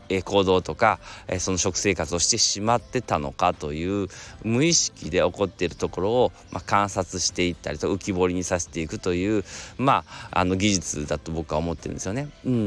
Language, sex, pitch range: Japanese, male, 85-115 Hz